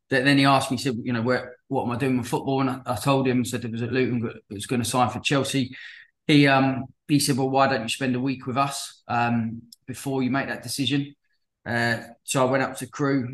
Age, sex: 20-39, male